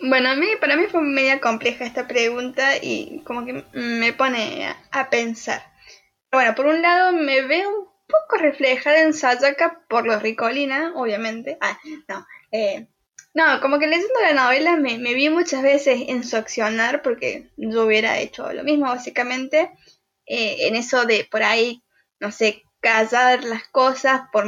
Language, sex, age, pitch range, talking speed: Spanish, female, 10-29, 235-315 Hz, 170 wpm